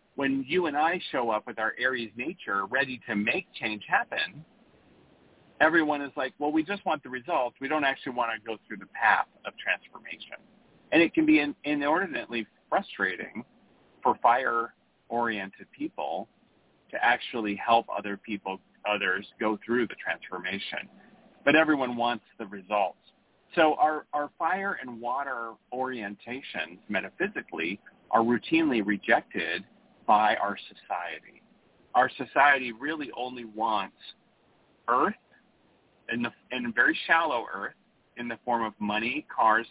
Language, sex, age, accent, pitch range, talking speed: English, male, 40-59, American, 105-140 Hz, 135 wpm